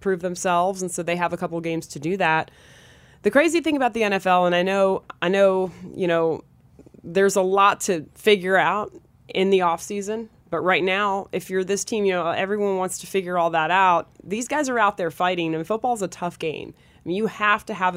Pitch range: 160-195 Hz